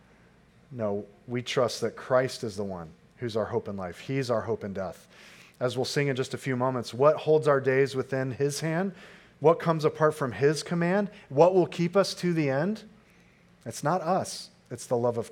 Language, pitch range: English, 115-150 Hz